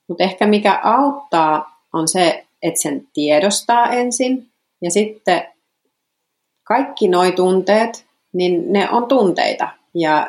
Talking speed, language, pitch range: 115 wpm, Finnish, 165-230 Hz